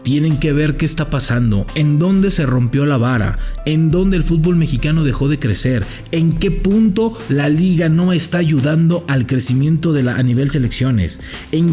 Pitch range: 140-185 Hz